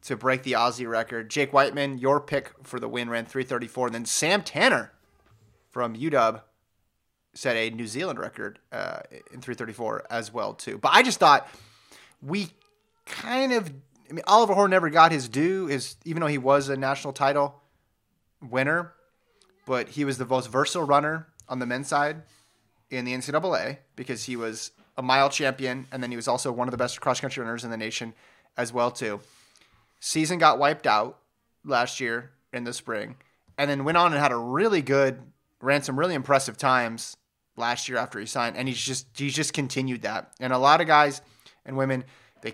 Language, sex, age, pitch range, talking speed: English, male, 30-49, 120-140 Hz, 190 wpm